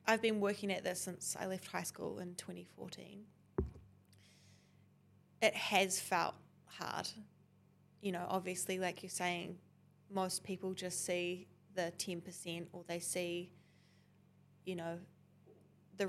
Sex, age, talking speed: female, 20-39, 125 wpm